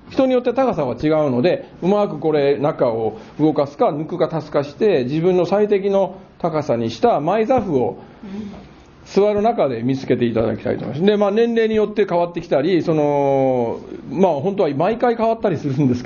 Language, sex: Japanese, male